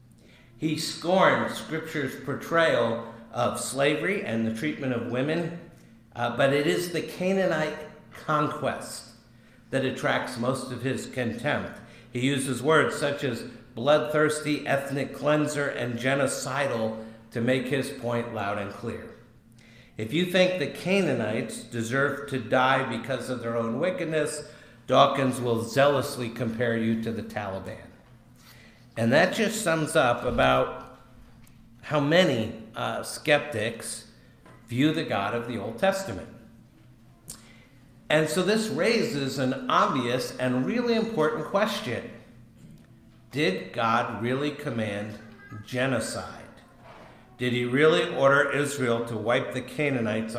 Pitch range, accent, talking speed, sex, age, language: 115-145 Hz, American, 125 wpm, male, 50-69, English